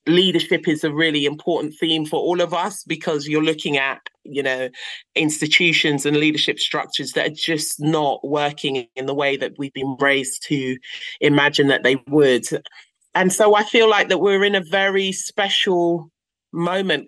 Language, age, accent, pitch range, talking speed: English, 30-49, British, 140-170 Hz, 170 wpm